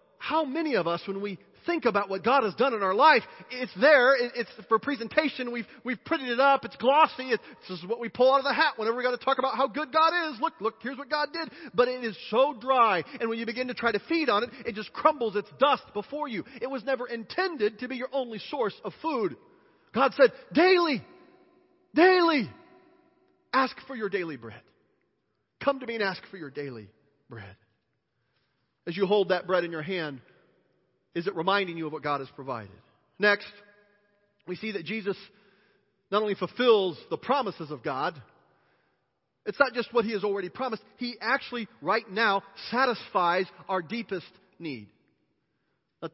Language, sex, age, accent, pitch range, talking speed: English, male, 40-59, American, 180-260 Hz, 195 wpm